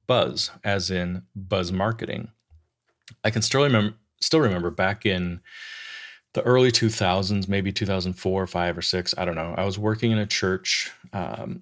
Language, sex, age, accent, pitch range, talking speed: English, male, 30-49, American, 95-115 Hz, 170 wpm